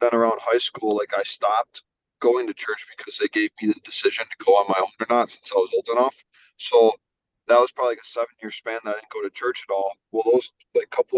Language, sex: English, male